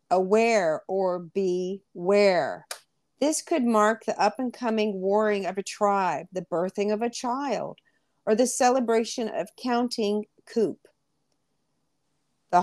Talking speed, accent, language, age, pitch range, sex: 115 wpm, American, English, 50-69, 190-225 Hz, female